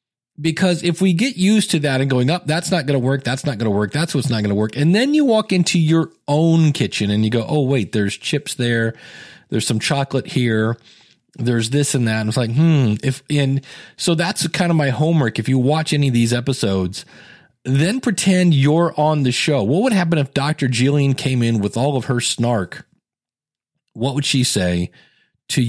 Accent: American